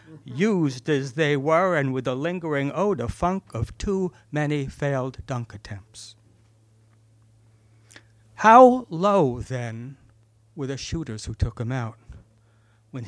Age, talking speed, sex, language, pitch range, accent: 60-79, 125 wpm, male, English, 110-155 Hz, American